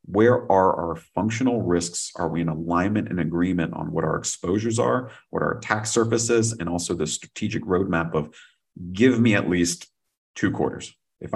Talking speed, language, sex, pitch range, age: 180 wpm, English, male, 85-115 Hz, 40-59